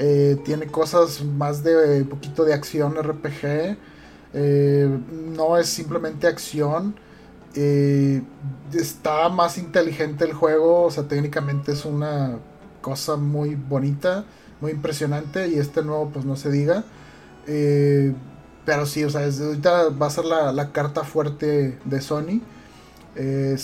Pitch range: 140-165 Hz